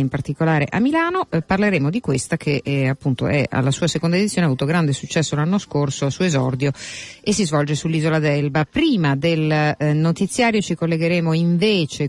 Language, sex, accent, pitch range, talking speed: Italian, female, native, 140-180 Hz, 185 wpm